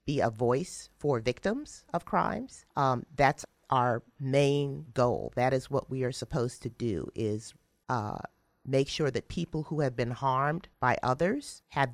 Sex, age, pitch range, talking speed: female, 40-59, 125-145 Hz, 165 wpm